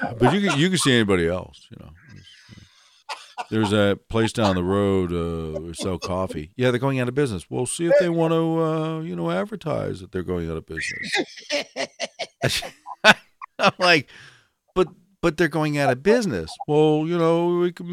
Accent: American